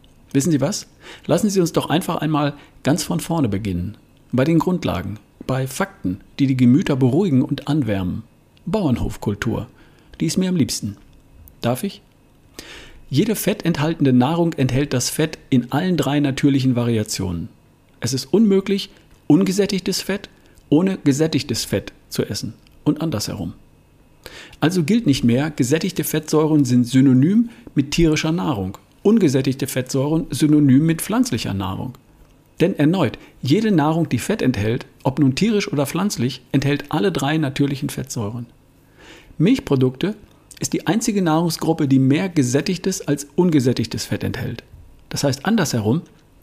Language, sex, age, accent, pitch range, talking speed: German, male, 50-69, German, 130-170 Hz, 135 wpm